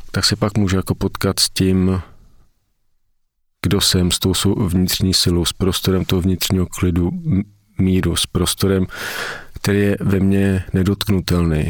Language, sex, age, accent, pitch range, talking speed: Czech, male, 40-59, native, 90-105 Hz, 140 wpm